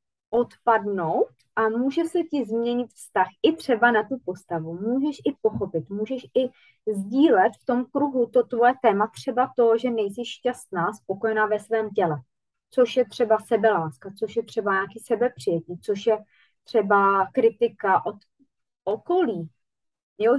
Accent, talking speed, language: native, 145 wpm, Czech